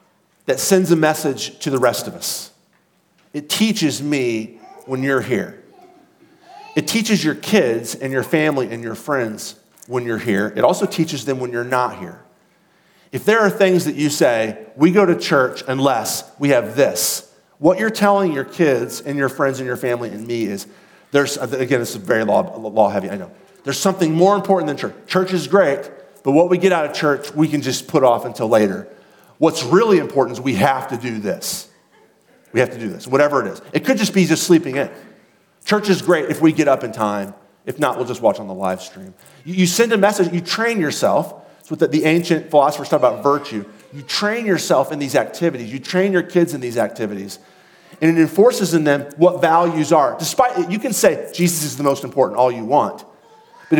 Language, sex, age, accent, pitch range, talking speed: English, male, 40-59, American, 130-185 Hz, 210 wpm